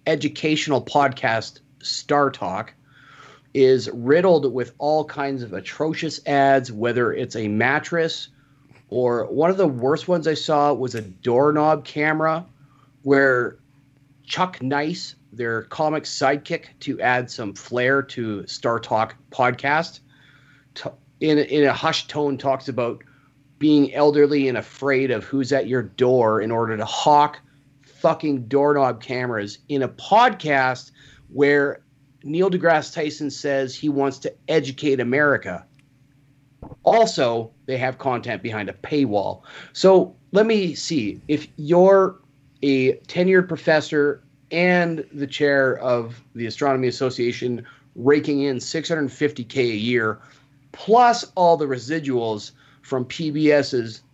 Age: 30-49